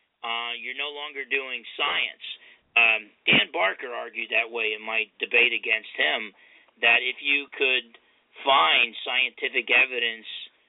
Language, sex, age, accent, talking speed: English, male, 40-59, American, 135 wpm